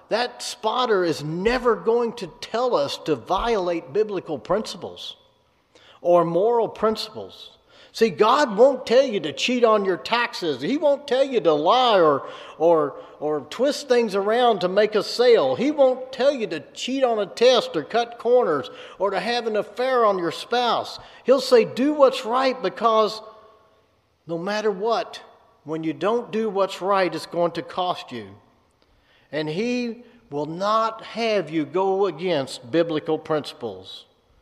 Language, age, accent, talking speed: English, 50-69, American, 155 wpm